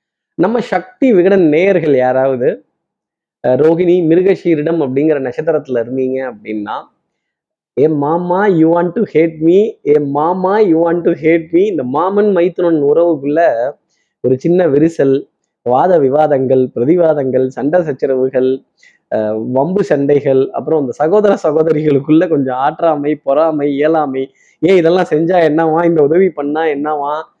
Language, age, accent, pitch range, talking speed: Tamil, 20-39, native, 140-185 Hz, 120 wpm